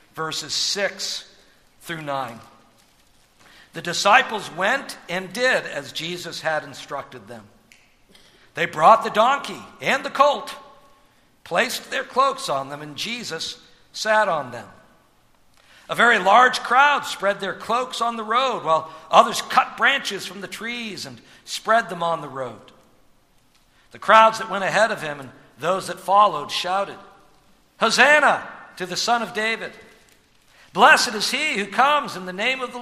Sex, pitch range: male, 145-215 Hz